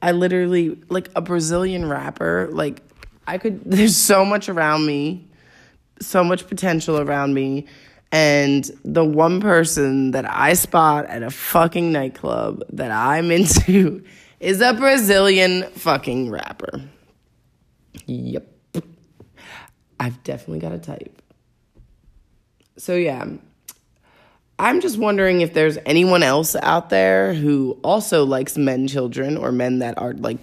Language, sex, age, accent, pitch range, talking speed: English, female, 20-39, American, 140-185 Hz, 130 wpm